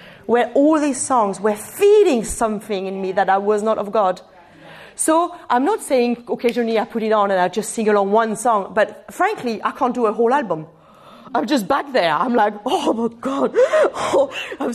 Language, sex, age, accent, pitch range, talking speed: English, female, 40-59, French, 195-290 Hz, 200 wpm